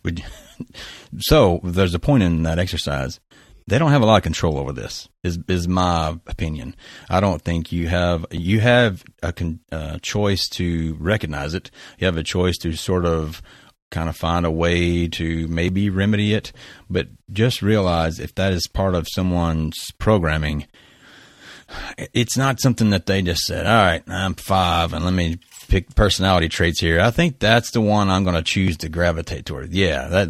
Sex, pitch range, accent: male, 85-100 Hz, American